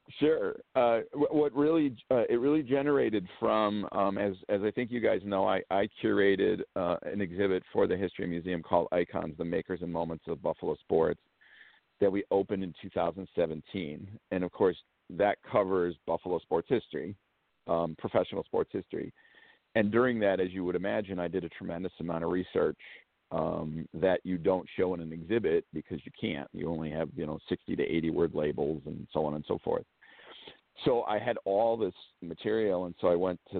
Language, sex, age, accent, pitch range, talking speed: English, male, 50-69, American, 85-105 Hz, 190 wpm